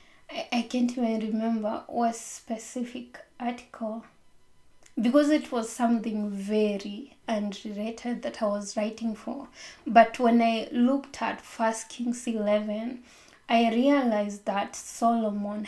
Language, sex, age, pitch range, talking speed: English, female, 20-39, 215-245 Hz, 115 wpm